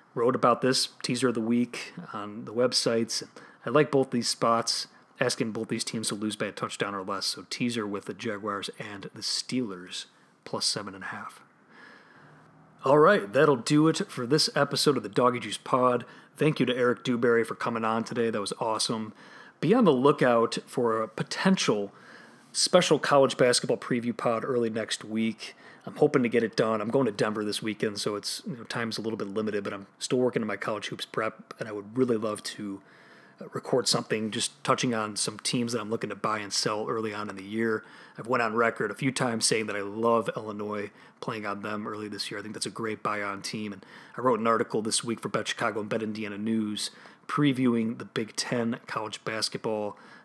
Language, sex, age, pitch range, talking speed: English, male, 30-49, 110-125 Hz, 215 wpm